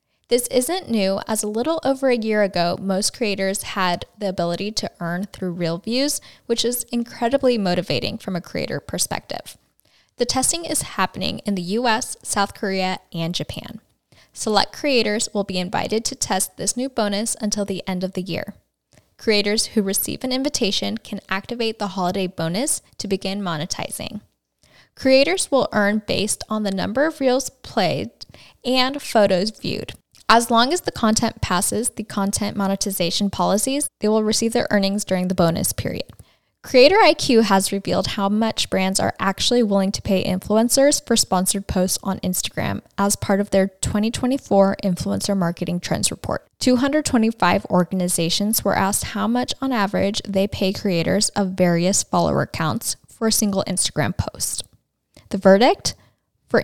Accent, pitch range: American, 190-235 Hz